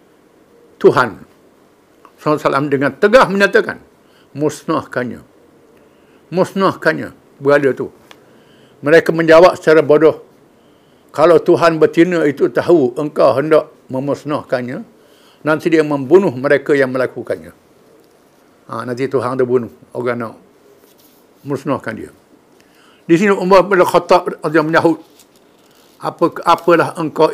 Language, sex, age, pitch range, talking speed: English, male, 60-79, 145-175 Hz, 105 wpm